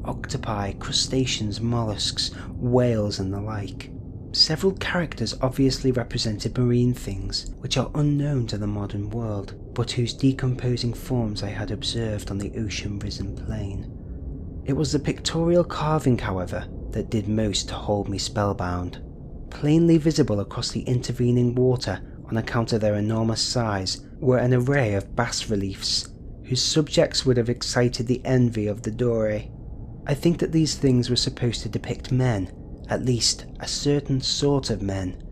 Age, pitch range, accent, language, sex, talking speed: 30-49, 105-125 Hz, British, English, male, 150 wpm